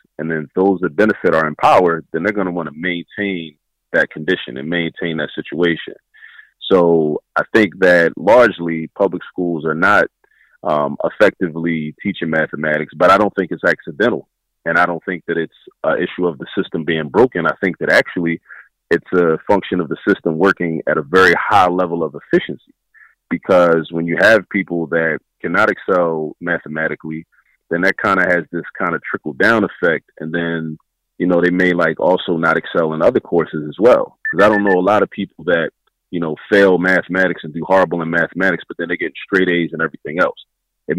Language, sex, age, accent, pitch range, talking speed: English, male, 30-49, American, 80-90 Hz, 195 wpm